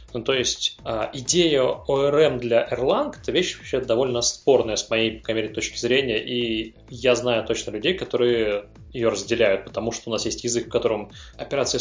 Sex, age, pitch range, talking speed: male, 20-39, 110-135 Hz, 175 wpm